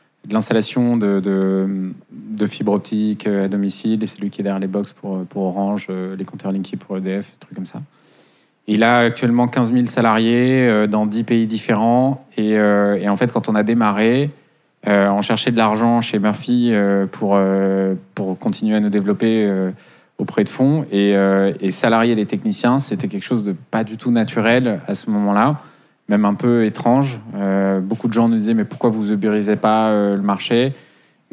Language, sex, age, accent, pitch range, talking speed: French, male, 20-39, French, 100-120 Hz, 190 wpm